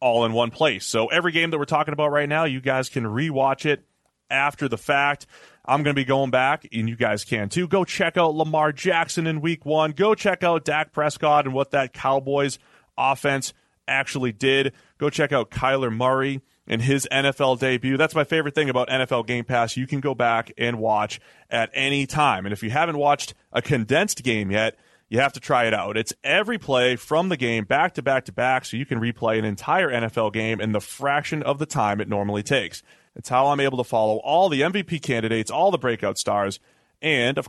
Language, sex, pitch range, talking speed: English, male, 115-150 Hz, 220 wpm